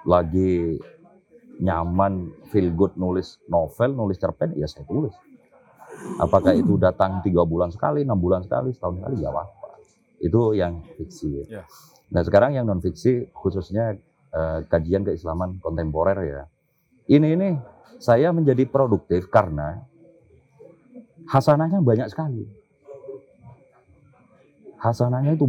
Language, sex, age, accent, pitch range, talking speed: Indonesian, male, 40-59, native, 90-140 Hz, 115 wpm